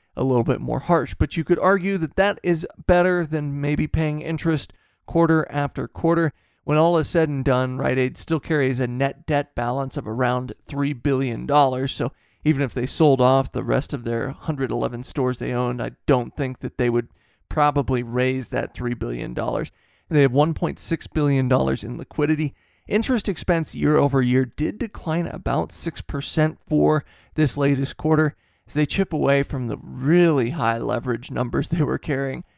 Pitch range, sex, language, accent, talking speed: 125-155 Hz, male, English, American, 180 wpm